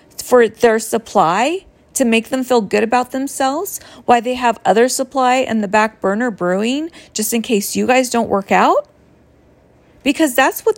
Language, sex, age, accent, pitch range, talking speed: English, female, 40-59, American, 195-260 Hz, 175 wpm